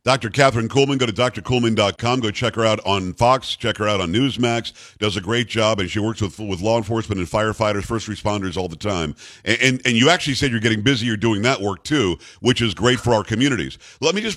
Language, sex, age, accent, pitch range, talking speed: English, male, 50-69, American, 110-140 Hz, 240 wpm